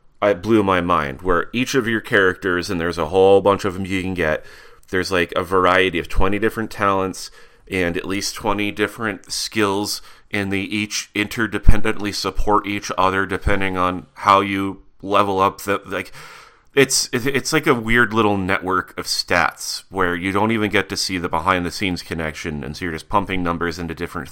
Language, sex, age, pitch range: English, male, 30-49, 95-110 Hz